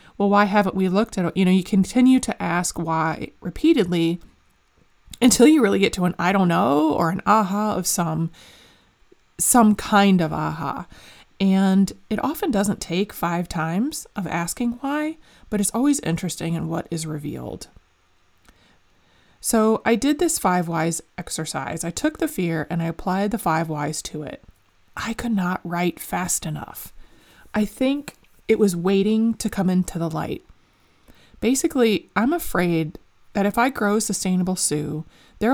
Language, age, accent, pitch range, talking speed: English, 20-39, American, 170-225 Hz, 160 wpm